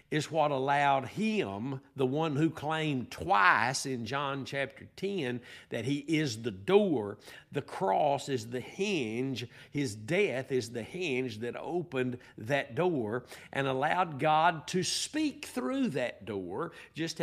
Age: 60-79